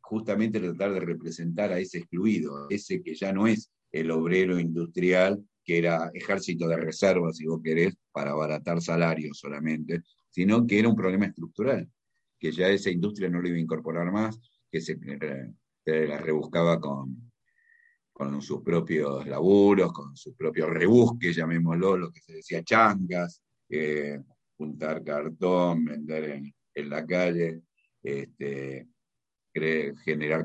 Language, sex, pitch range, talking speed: Spanish, male, 80-100 Hz, 145 wpm